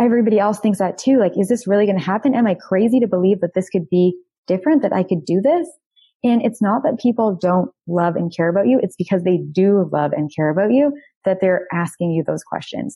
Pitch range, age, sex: 170-210 Hz, 20-39, female